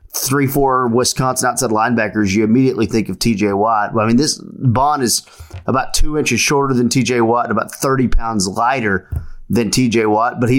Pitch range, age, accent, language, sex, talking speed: 110-135 Hz, 30-49, American, English, male, 185 wpm